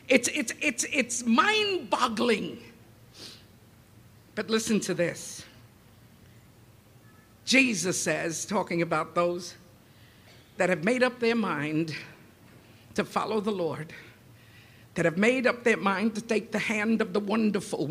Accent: American